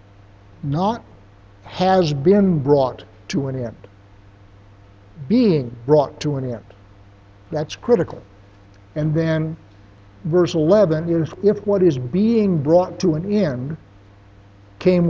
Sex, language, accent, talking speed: male, English, American, 110 wpm